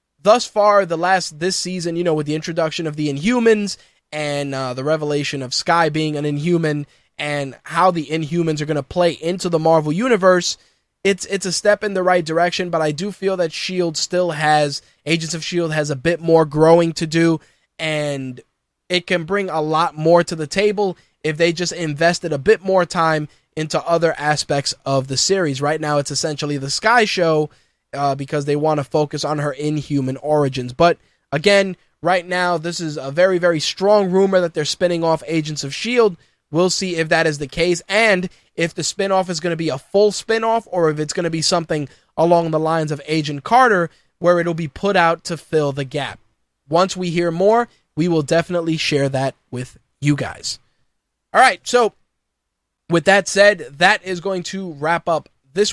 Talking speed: 200 wpm